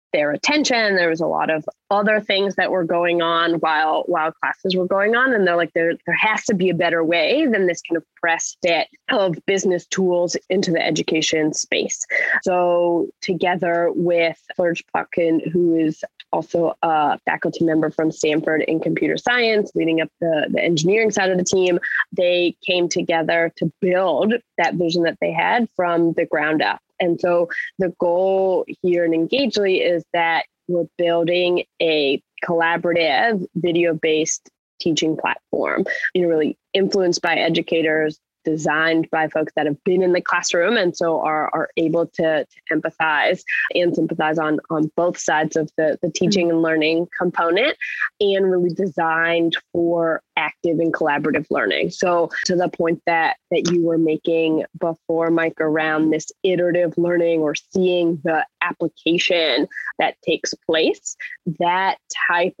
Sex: female